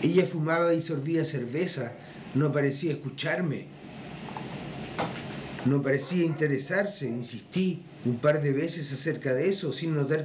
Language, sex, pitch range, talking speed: Polish, male, 140-175 Hz, 125 wpm